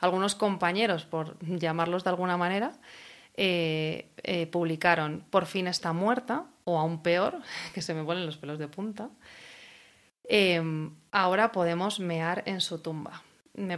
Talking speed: 145 wpm